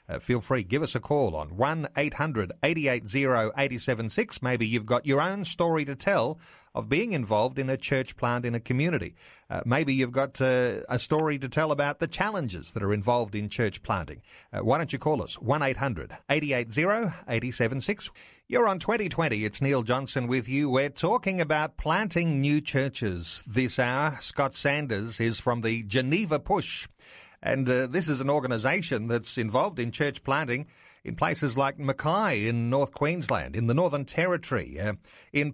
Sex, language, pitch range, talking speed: male, English, 115-150 Hz, 165 wpm